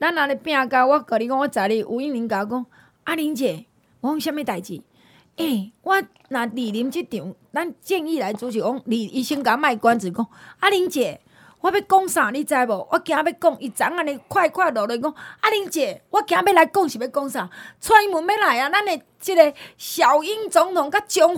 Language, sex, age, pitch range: Chinese, female, 30-49, 230-320 Hz